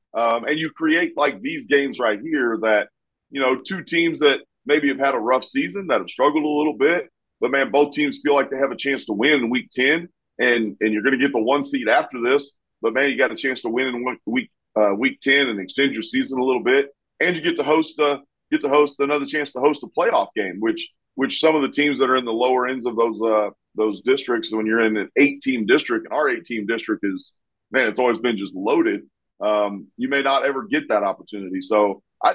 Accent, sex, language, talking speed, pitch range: American, male, English, 250 wpm, 110-155 Hz